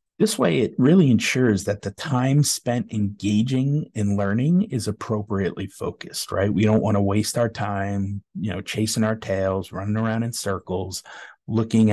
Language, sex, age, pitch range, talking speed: English, male, 30-49, 100-115 Hz, 165 wpm